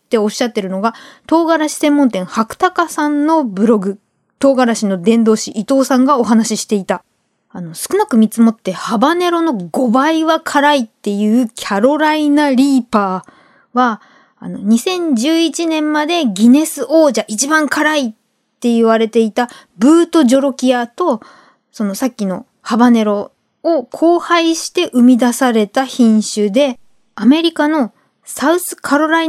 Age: 20-39